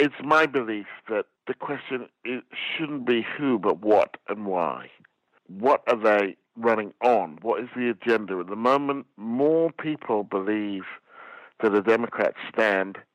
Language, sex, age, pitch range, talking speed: English, male, 60-79, 110-155 Hz, 145 wpm